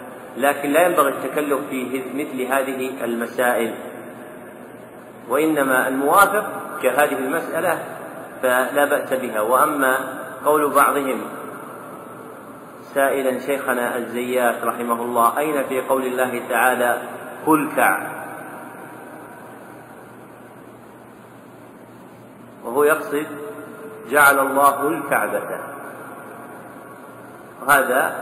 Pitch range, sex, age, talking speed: 125-140 Hz, male, 40-59, 75 wpm